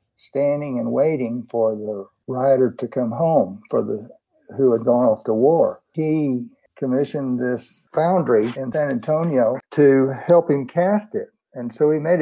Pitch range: 120-155 Hz